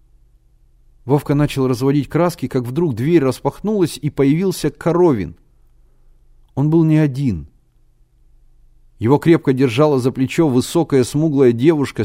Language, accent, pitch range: Russian, native, 115-155 Hz